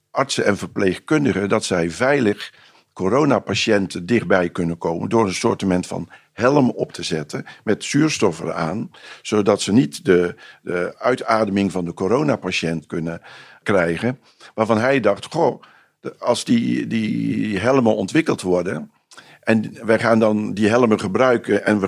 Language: Dutch